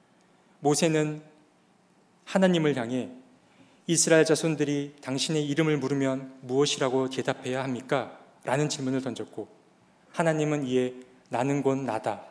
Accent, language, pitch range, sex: native, Korean, 125-150 Hz, male